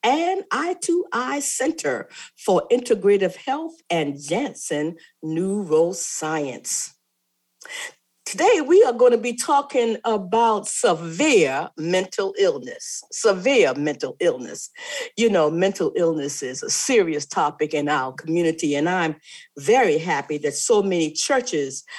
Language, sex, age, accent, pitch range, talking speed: English, female, 50-69, American, 165-260 Hz, 120 wpm